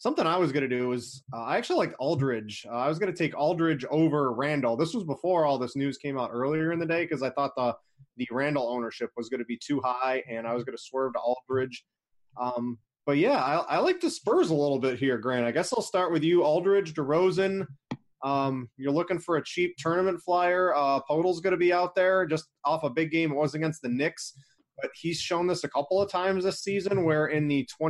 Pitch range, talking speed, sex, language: 130-165 Hz, 245 wpm, male, English